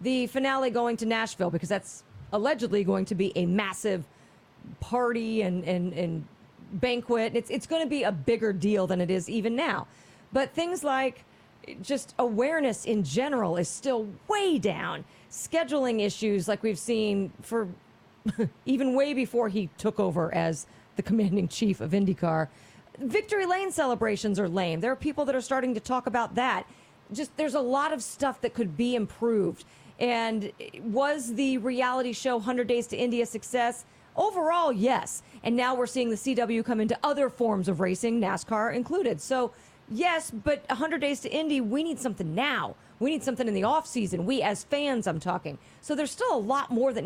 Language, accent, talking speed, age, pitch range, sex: English, American, 180 wpm, 40-59, 210-275 Hz, female